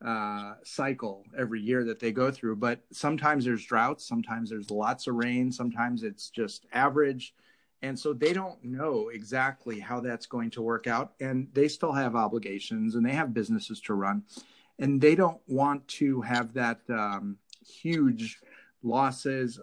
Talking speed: 165 wpm